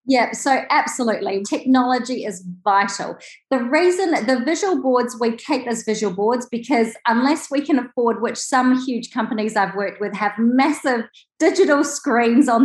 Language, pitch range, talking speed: English, 220-275 Hz, 155 wpm